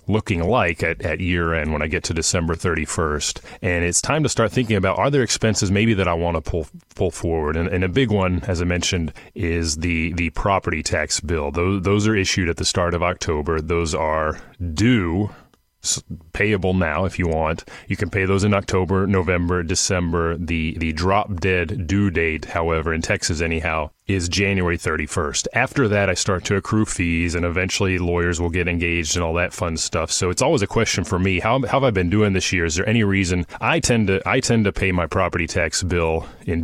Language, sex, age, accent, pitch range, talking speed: English, male, 30-49, American, 85-100 Hz, 215 wpm